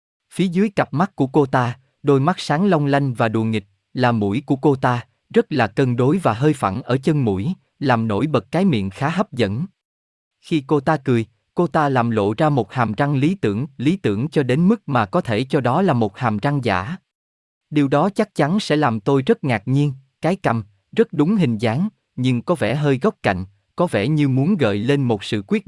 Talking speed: 230 wpm